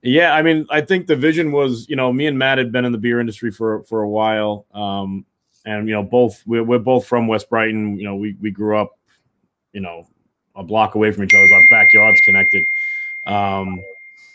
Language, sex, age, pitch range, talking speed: English, male, 20-39, 100-120 Hz, 220 wpm